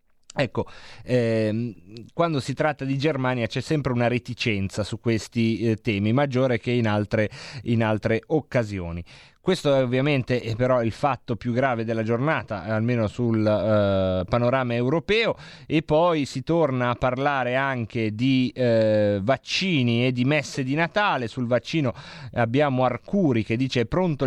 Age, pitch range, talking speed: 30-49, 115-145 Hz, 150 wpm